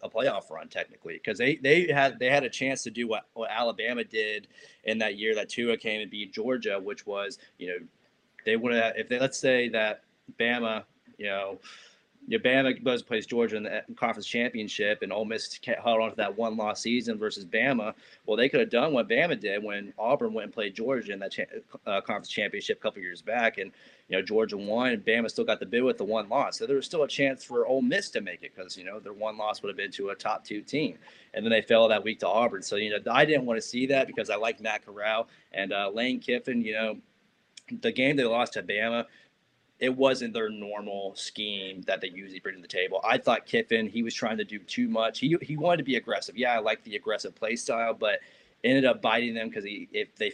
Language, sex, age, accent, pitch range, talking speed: English, male, 20-39, American, 110-140 Hz, 240 wpm